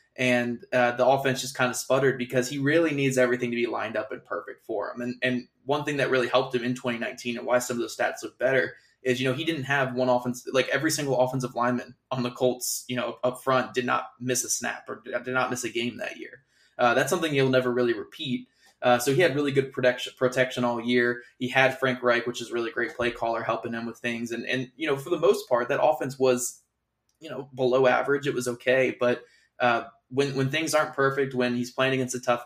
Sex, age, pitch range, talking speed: male, 20-39, 120-135 Hz, 250 wpm